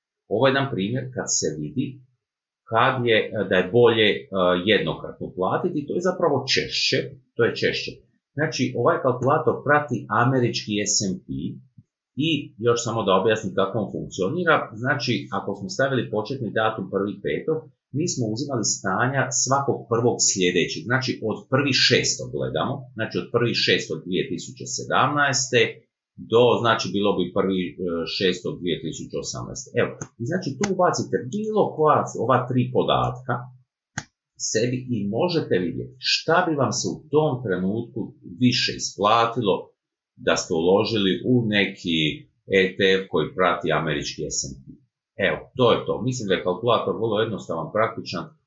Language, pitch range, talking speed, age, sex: Croatian, 95-130 Hz, 135 wpm, 30-49, male